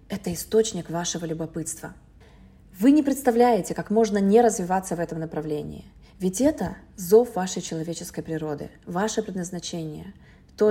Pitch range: 170-230 Hz